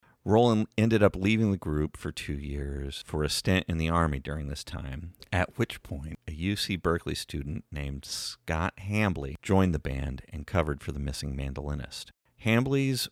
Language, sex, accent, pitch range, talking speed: English, male, American, 75-100 Hz, 175 wpm